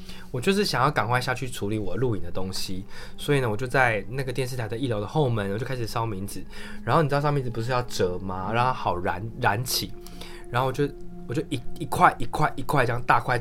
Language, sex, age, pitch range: Chinese, male, 20-39, 110-155 Hz